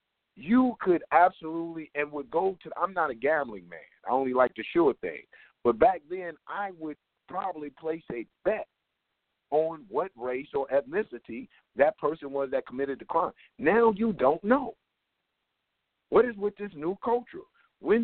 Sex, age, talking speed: male, 50-69, 170 wpm